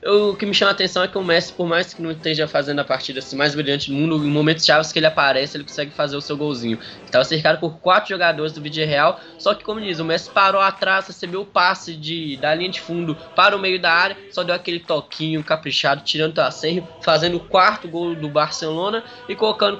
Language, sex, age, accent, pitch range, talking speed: Portuguese, male, 10-29, Brazilian, 150-175 Hz, 245 wpm